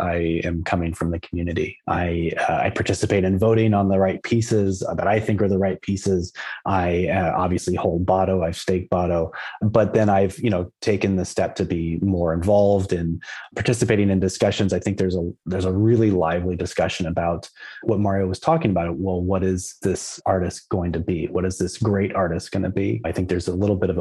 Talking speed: 210 wpm